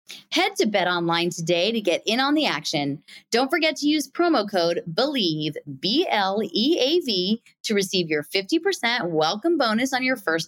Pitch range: 155-190 Hz